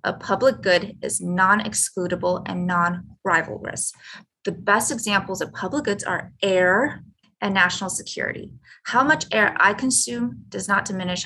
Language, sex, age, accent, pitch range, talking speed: English, female, 20-39, American, 195-245 Hz, 140 wpm